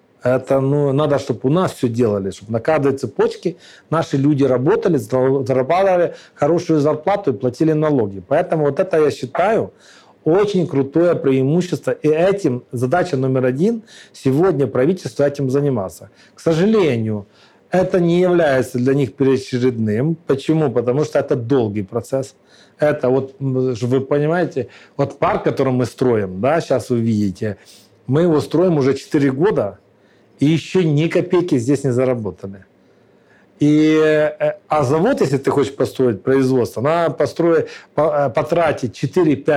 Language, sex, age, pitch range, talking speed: Ukrainian, male, 40-59, 125-160 Hz, 130 wpm